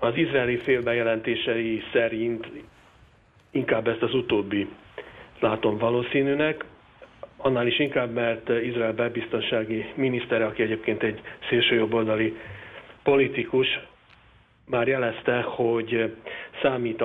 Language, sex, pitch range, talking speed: Hungarian, male, 115-130 Hz, 90 wpm